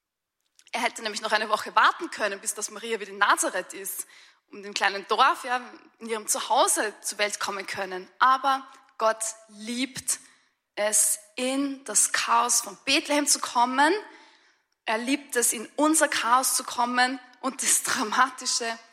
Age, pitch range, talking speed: 20-39, 220-295 Hz, 155 wpm